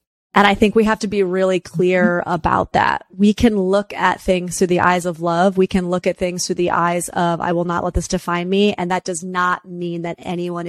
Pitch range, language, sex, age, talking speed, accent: 170-195 Hz, English, female, 30-49, 245 wpm, American